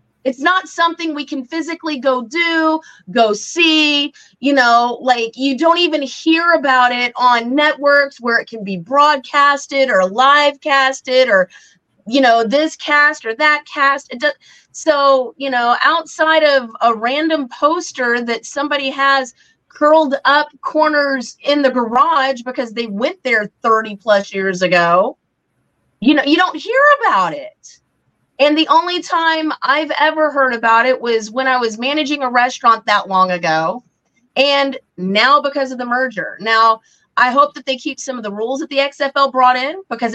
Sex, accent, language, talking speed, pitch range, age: female, American, English, 165 wpm, 230-295 Hz, 30-49